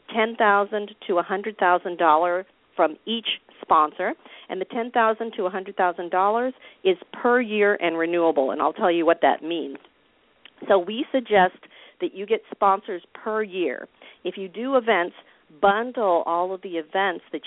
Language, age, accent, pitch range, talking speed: English, 50-69, American, 165-210 Hz, 140 wpm